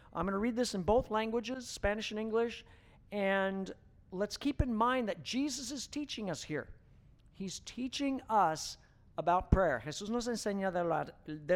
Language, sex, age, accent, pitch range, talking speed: English, male, 50-69, American, 145-215 Hz, 160 wpm